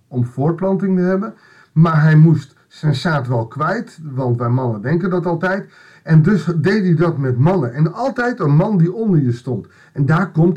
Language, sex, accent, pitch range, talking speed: Dutch, male, Dutch, 130-175 Hz, 200 wpm